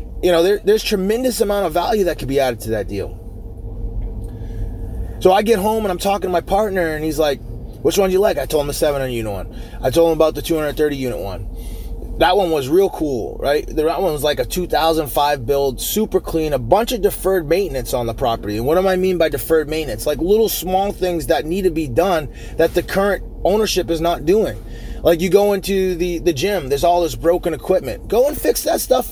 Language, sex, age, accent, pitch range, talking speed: English, male, 20-39, American, 145-215 Hz, 230 wpm